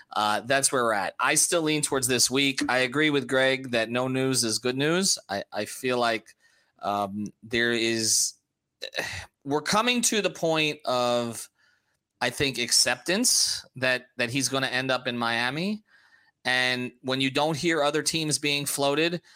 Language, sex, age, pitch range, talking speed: English, male, 30-49, 115-145 Hz, 175 wpm